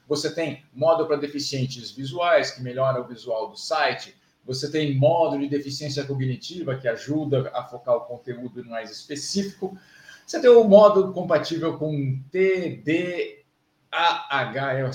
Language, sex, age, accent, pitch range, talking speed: Portuguese, male, 50-69, Brazilian, 130-165 Hz, 135 wpm